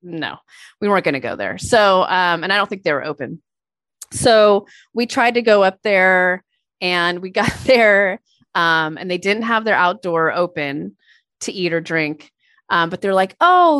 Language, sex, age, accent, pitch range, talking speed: English, female, 30-49, American, 165-215 Hz, 190 wpm